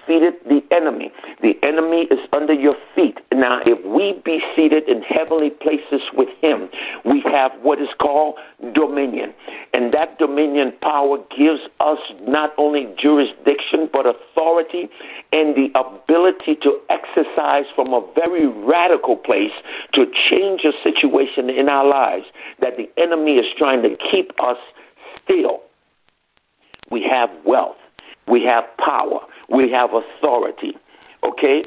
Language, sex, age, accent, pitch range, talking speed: English, male, 60-79, American, 140-165 Hz, 135 wpm